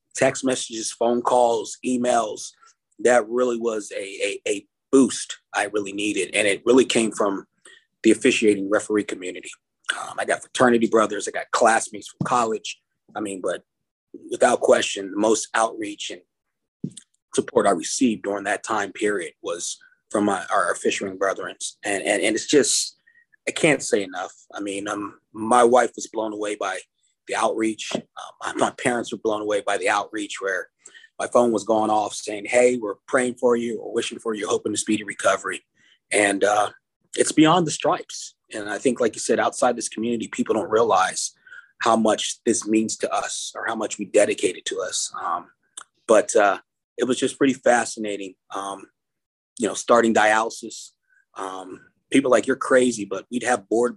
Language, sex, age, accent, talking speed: English, male, 30-49, American, 180 wpm